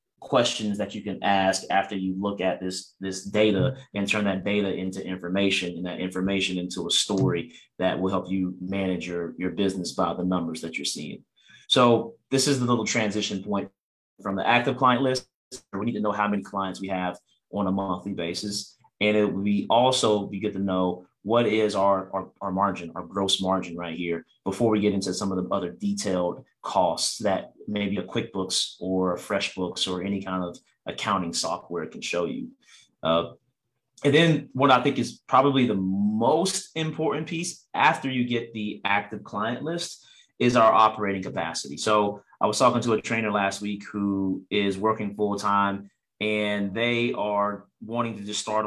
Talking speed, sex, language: 185 wpm, male, English